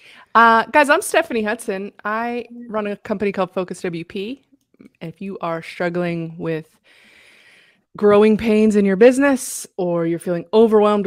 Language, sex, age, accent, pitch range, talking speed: English, female, 20-39, American, 180-225 Hz, 140 wpm